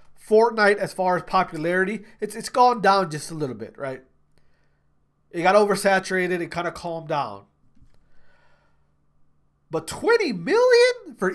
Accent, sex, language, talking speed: American, male, English, 135 wpm